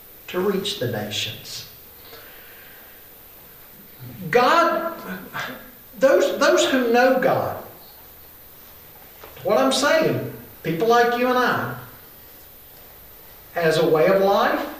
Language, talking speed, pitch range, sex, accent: English, 95 wpm, 185-265 Hz, male, American